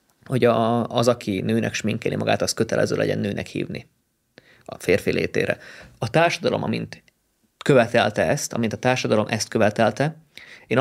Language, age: Hungarian, 20-39